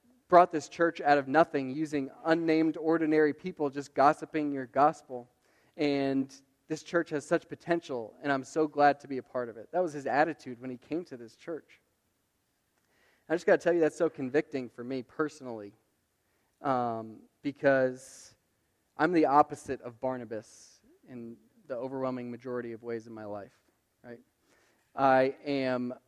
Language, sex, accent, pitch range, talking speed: English, male, American, 130-160 Hz, 165 wpm